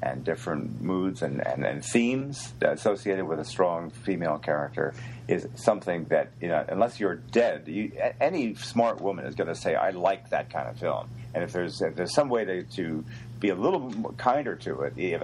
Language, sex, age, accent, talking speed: English, male, 50-69, American, 205 wpm